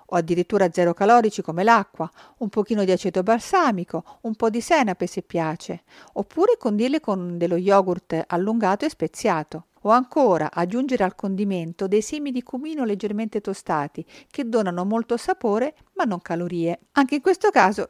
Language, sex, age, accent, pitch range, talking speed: Italian, female, 50-69, native, 175-235 Hz, 160 wpm